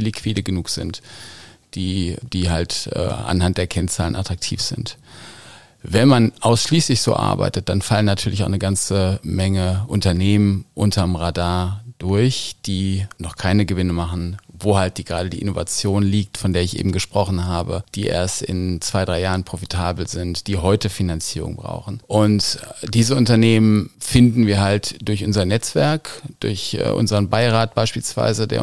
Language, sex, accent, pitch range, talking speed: German, male, German, 95-110 Hz, 150 wpm